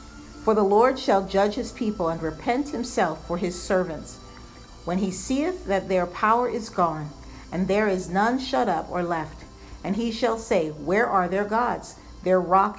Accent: American